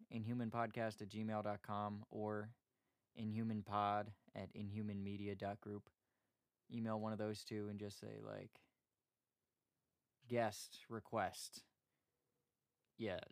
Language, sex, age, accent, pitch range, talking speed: English, male, 20-39, American, 105-125 Hz, 90 wpm